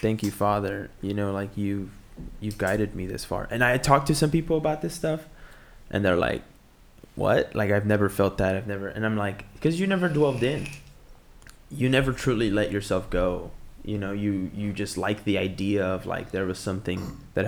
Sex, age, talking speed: male, 20-39, 210 wpm